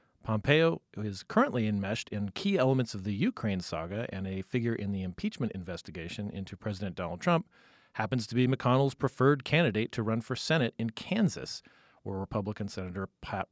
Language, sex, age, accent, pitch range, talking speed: English, male, 40-59, American, 100-125 Hz, 175 wpm